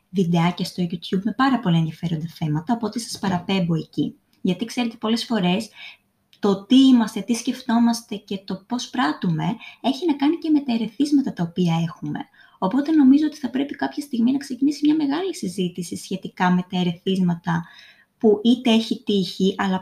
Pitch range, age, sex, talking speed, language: 180-265 Hz, 20-39, female, 170 wpm, Greek